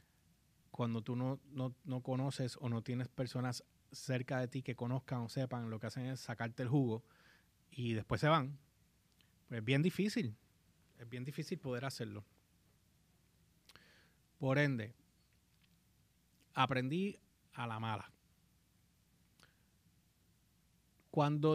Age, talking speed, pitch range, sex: 30-49, 125 wpm, 120-145 Hz, male